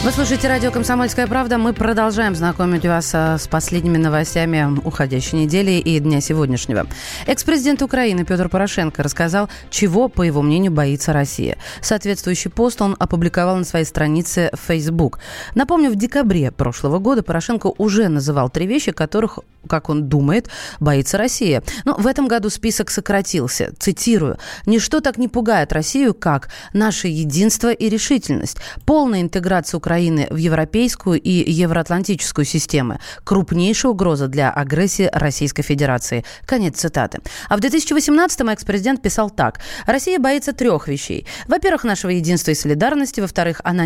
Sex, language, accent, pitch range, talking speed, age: female, Russian, native, 160-225 Hz, 140 wpm, 30-49